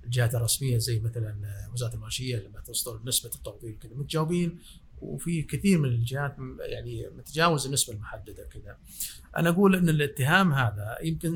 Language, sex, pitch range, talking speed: Arabic, male, 115-150 Hz, 145 wpm